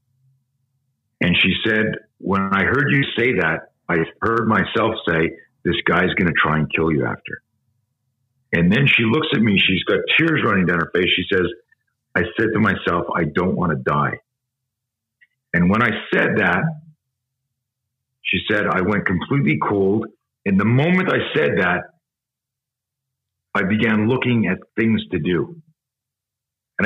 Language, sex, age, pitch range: English, male, 50-69, 100-135 Hz